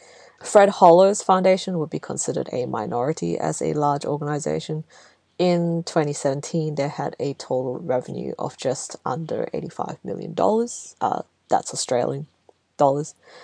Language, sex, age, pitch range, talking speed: English, female, 20-39, 145-185 Hz, 125 wpm